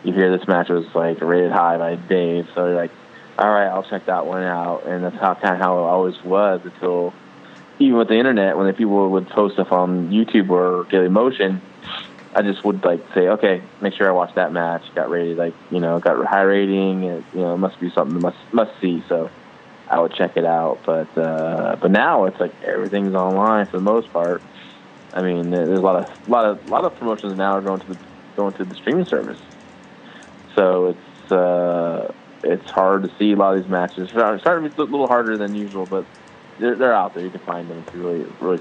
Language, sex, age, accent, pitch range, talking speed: English, male, 20-39, American, 90-100 Hz, 235 wpm